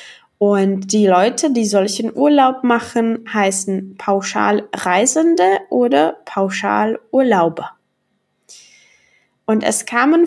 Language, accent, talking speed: Czech, German, 80 wpm